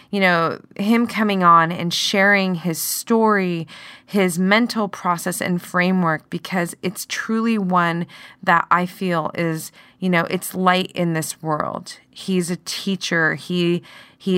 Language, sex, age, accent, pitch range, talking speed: English, female, 20-39, American, 160-185 Hz, 140 wpm